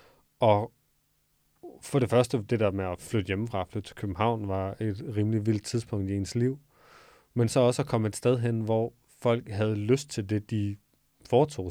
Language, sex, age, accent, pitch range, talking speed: Danish, male, 30-49, native, 100-120 Hz, 190 wpm